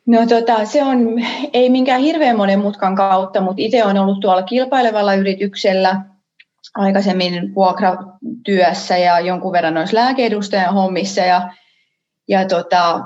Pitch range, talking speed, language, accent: 180-225 Hz, 120 wpm, Finnish, native